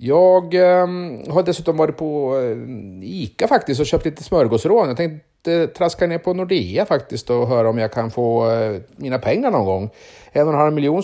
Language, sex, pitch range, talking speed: Swedish, male, 115-160 Hz, 180 wpm